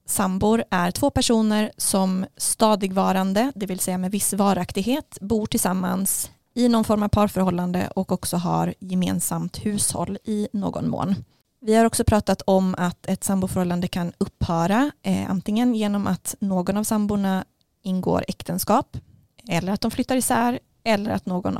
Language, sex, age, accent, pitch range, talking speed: Swedish, female, 20-39, native, 125-210 Hz, 150 wpm